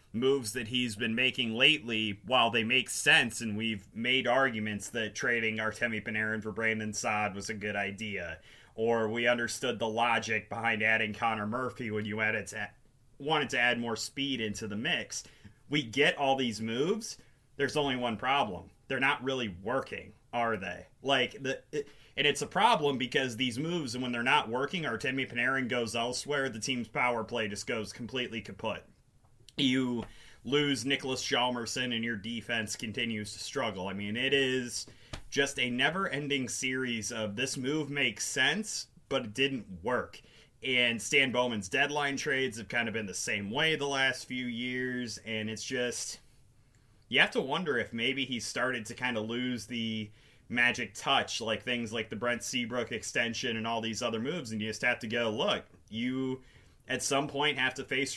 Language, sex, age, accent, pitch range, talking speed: English, male, 30-49, American, 110-130 Hz, 180 wpm